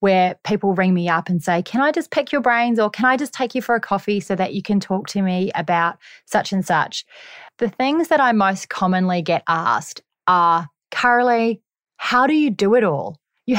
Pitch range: 185-235 Hz